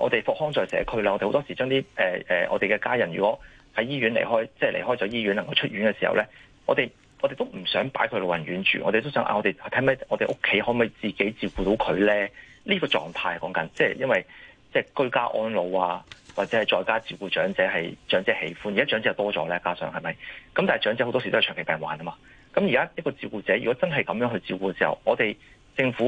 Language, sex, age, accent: Chinese, male, 30-49, native